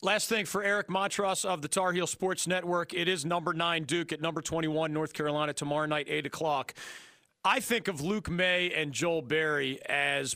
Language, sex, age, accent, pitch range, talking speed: English, male, 40-59, American, 150-200 Hz, 195 wpm